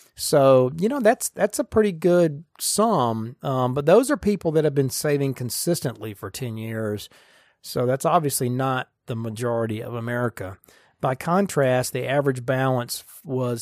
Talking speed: 160 wpm